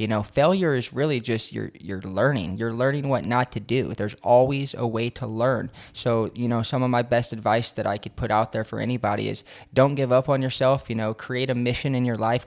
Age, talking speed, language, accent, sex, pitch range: 20-39, 245 wpm, Swedish, American, male, 110-130 Hz